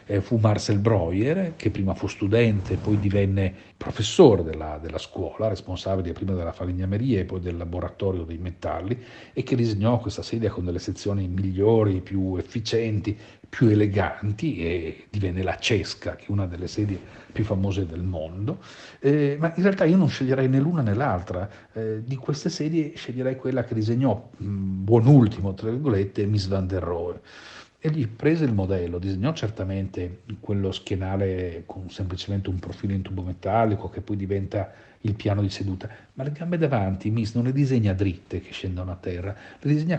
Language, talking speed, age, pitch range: Italian, 170 wpm, 40-59, 95-130 Hz